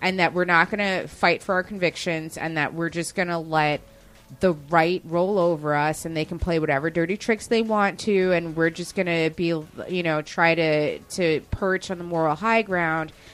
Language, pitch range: English, 160-200 Hz